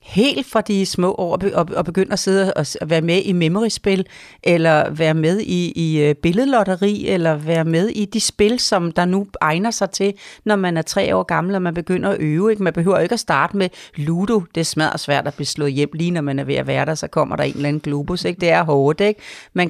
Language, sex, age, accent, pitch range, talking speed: Danish, female, 40-59, native, 160-210 Hz, 245 wpm